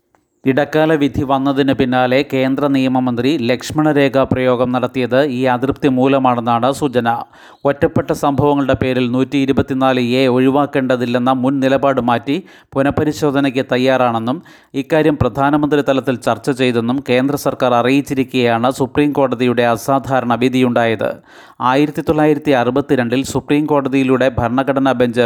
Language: Malayalam